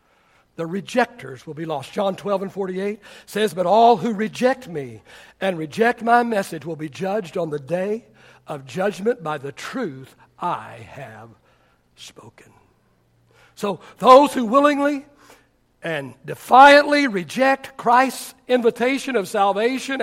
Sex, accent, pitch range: male, American, 170-275 Hz